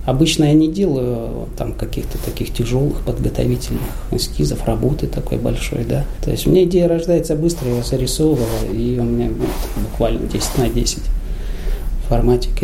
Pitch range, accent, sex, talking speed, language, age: 100-130 Hz, native, male, 155 wpm, Russian, 20-39